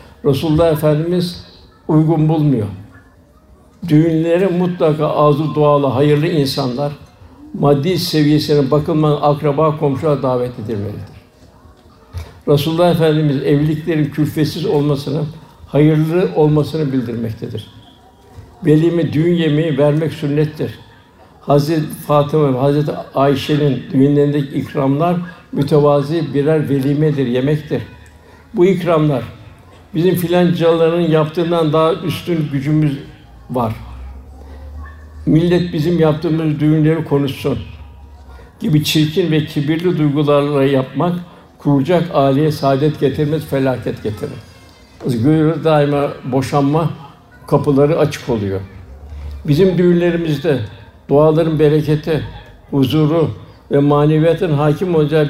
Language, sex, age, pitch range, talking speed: Turkish, male, 60-79, 125-155 Hz, 90 wpm